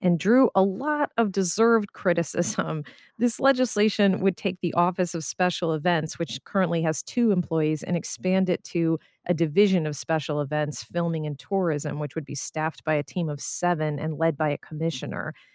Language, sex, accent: English, female, American